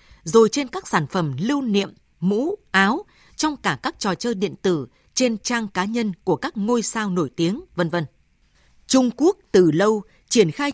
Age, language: 20-39, Vietnamese